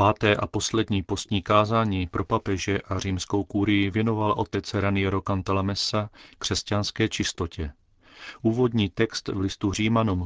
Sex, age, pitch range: male, 40-59, 95-105 Hz